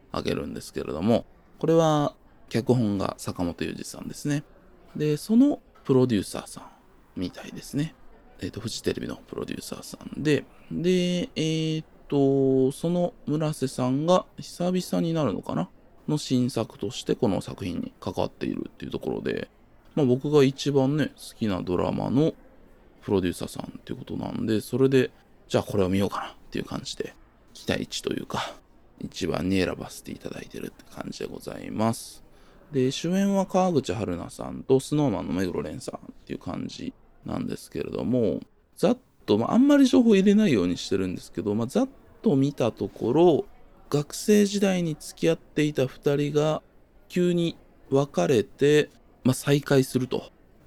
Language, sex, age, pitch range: Japanese, male, 20-39, 115-175 Hz